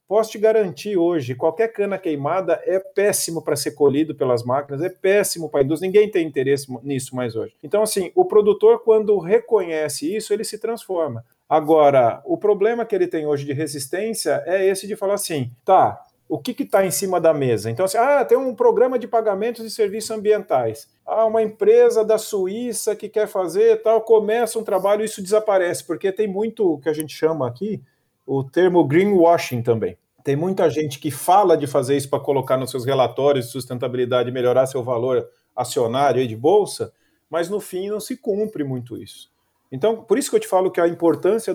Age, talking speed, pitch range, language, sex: 40-59, 200 wpm, 145-220 Hz, Portuguese, male